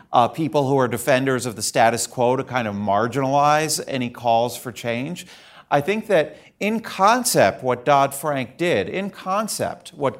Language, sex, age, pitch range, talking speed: English, male, 40-59, 120-155 Hz, 165 wpm